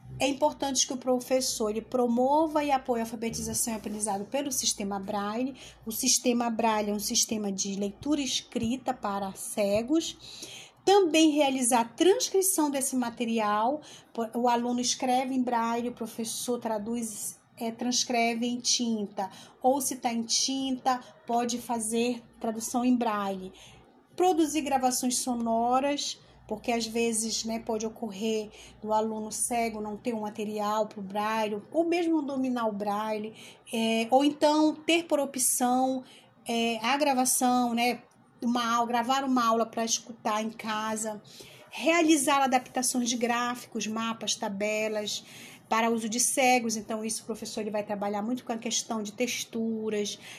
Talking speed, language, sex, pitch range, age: 140 wpm, Portuguese, female, 220-255 Hz, 30-49